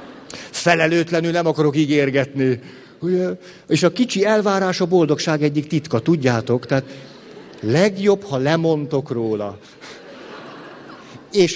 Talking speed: 105 wpm